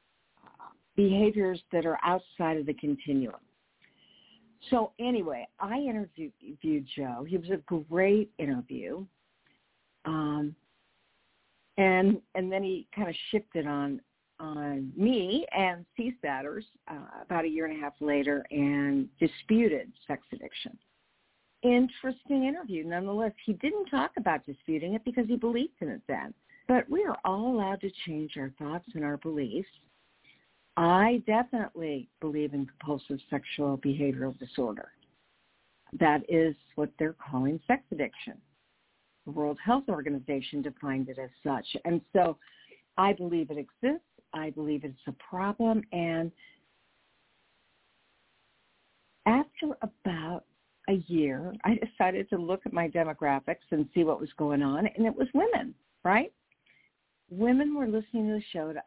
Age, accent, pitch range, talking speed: 50-69, American, 150-220 Hz, 135 wpm